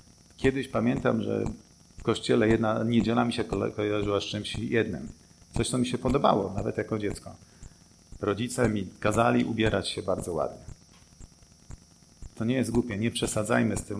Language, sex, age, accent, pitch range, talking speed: Polish, male, 50-69, native, 95-120 Hz, 165 wpm